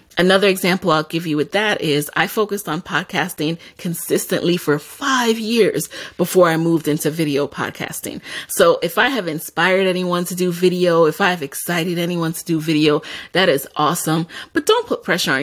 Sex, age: female, 30-49